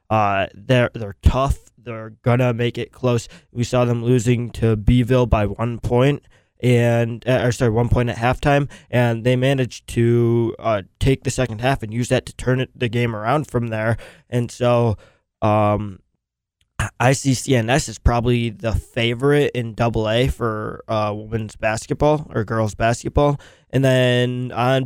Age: 20-39